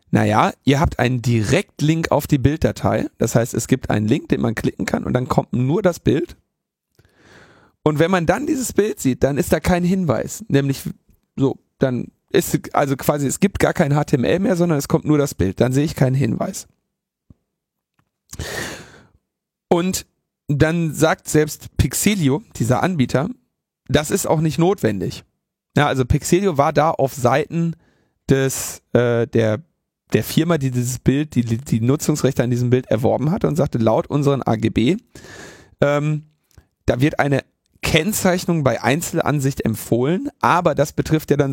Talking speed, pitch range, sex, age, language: 160 wpm, 125-165 Hz, male, 40-59, German